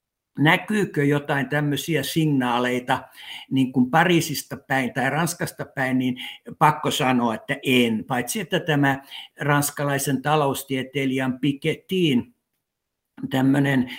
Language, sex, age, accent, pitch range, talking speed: Finnish, male, 60-79, native, 135-160 Hz, 100 wpm